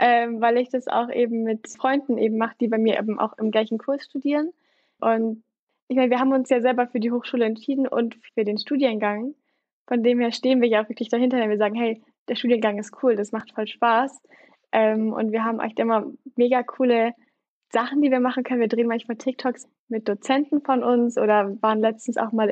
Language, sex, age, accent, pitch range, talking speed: German, female, 10-29, German, 225-265 Hz, 220 wpm